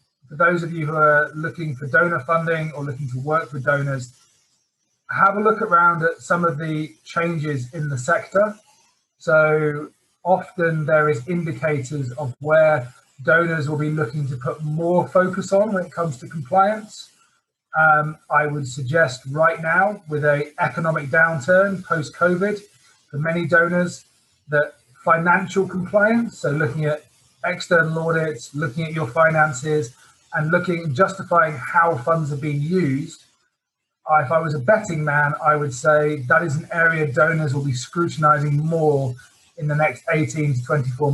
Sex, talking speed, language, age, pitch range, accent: male, 160 wpm, English, 30-49, 145-170 Hz, British